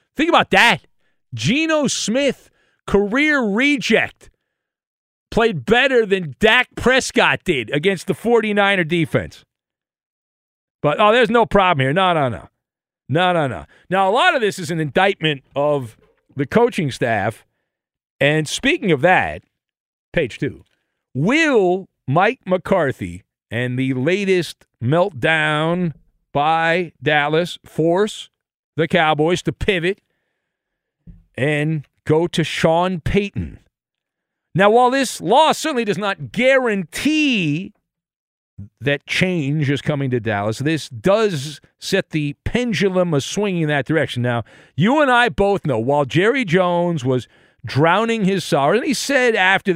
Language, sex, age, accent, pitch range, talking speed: English, male, 50-69, American, 140-200 Hz, 130 wpm